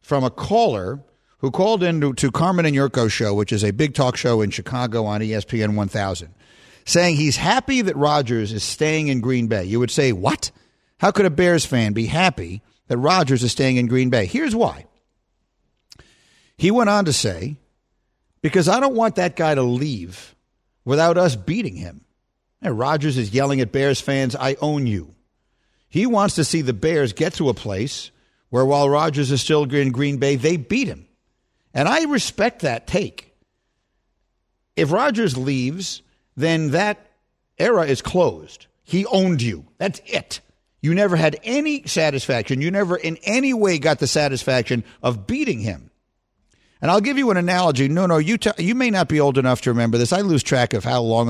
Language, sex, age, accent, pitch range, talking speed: English, male, 50-69, American, 115-165 Hz, 185 wpm